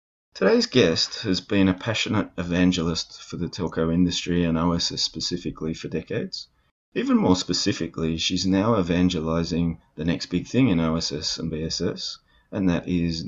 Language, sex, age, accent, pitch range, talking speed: English, male, 30-49, Australian, 85-95 Hz, 150 wpm